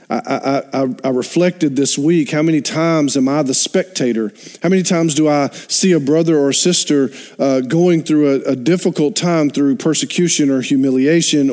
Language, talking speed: English, 175 wpm